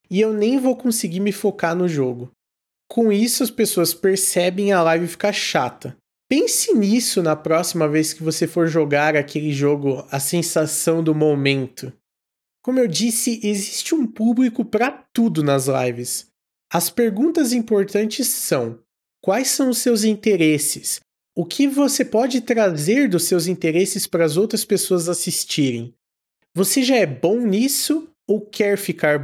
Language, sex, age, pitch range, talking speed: Portuguese, male, 20-39, 155-220 Hz, 150 wpm